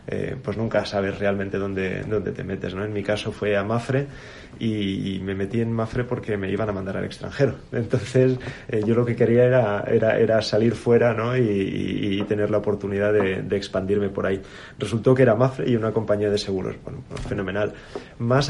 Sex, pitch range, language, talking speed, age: male, 100-125 Hz, Spanish, 210 wpm, 30-49